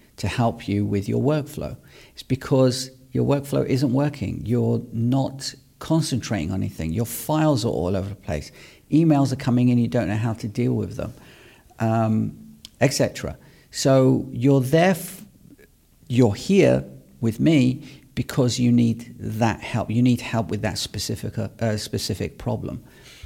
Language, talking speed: English, 155 wpm